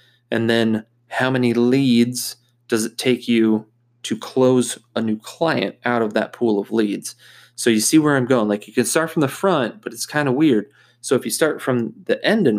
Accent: American